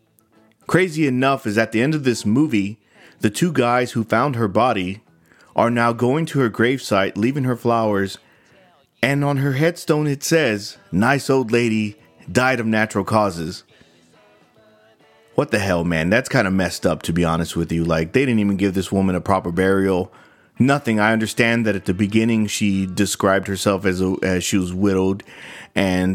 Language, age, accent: English, 30-49, American